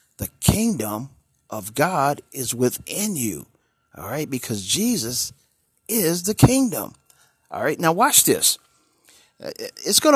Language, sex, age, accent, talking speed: English, male, 50-69, American, 125 wpm